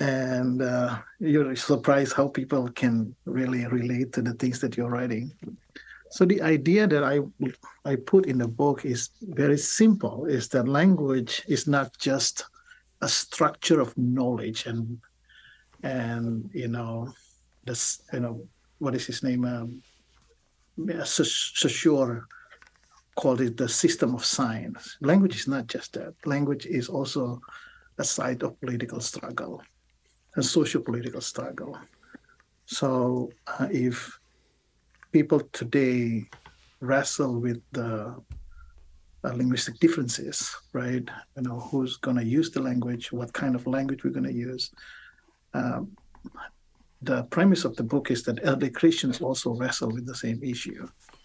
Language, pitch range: English, 120-140 Hz